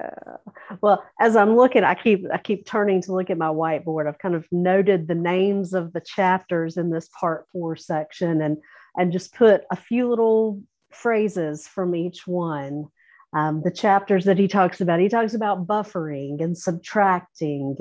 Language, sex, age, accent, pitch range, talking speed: English, female, 40-59, American, 160-205 Hz, 175 wpm